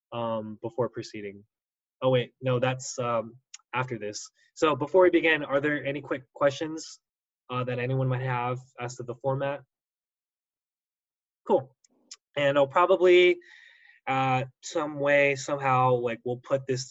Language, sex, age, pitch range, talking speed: English, male, 20-39, 125-150 Hz, 140 wpm